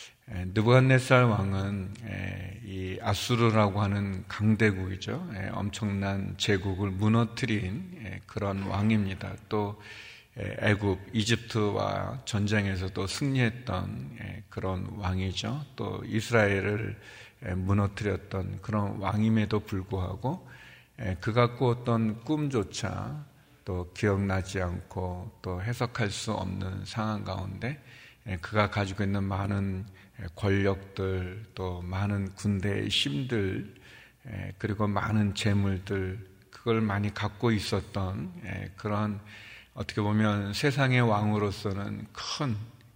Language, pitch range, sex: Korean, 95-110 Hz, male